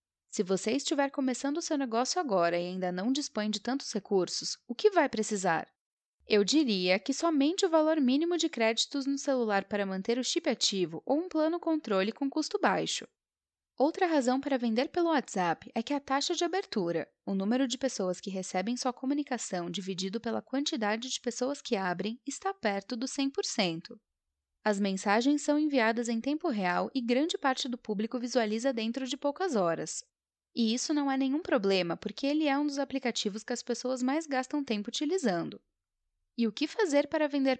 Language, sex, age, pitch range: Portuguese, female, 10-29, 210-295 Hz